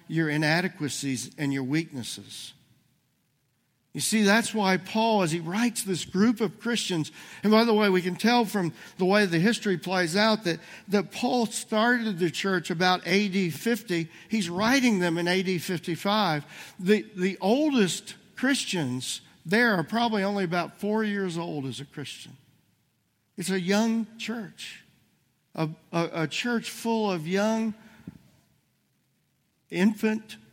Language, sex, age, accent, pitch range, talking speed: English, male, 50-69, American, 165-220 Hz, 145 wpm